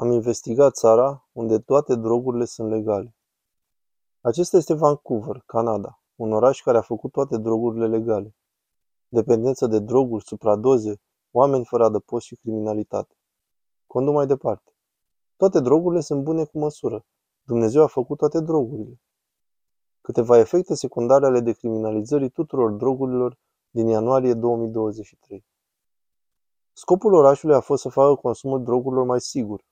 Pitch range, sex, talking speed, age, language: 115-140 Hz, male, 125 wpm, 20-39, Romanian